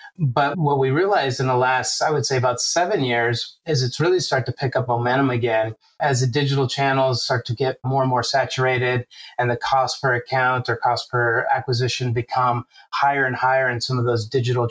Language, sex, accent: English, male, American